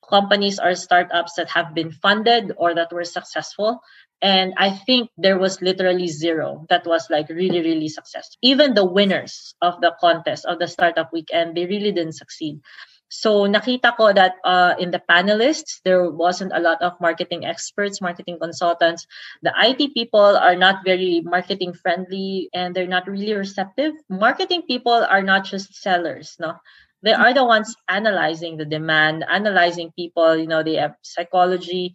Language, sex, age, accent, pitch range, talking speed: English, female, 20-39, Filipino, 170-200 Hz, 165 wpm